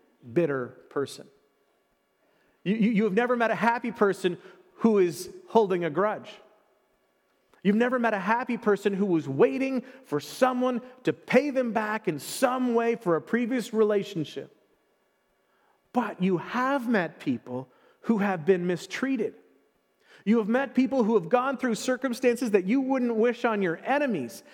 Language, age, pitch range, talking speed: English, 40-59, 170-230 Hz, 155 wpm